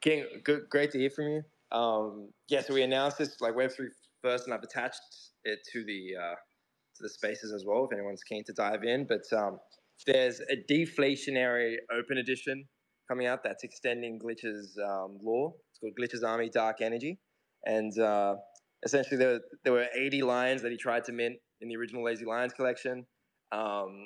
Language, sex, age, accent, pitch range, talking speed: English, male, 20-39, Australian, 115-135 Hz, 185 wpm